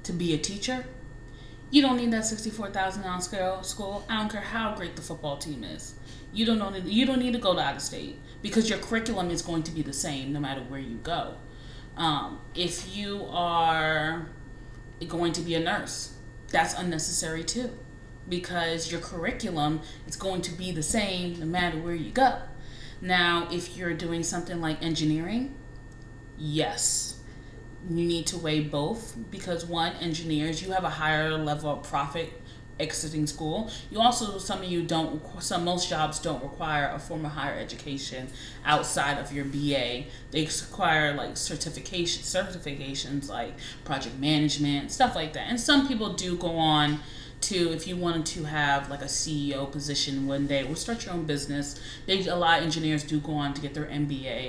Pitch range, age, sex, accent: 140-175 Hz, 30-49, female, American